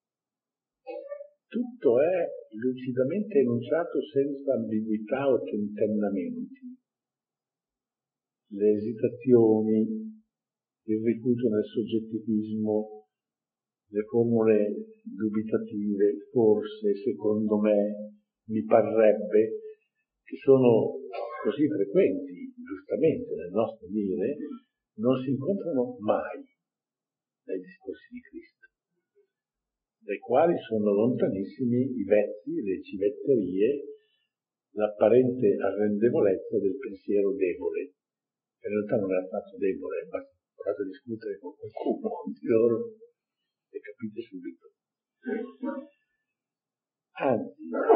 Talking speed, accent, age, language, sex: 85 wpm, native, 50-69, Italian, male